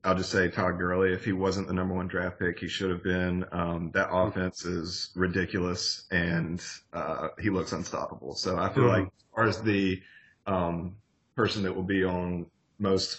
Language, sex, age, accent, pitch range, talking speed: English, male, 30-49, American, 90-100 Hz, 190 wpm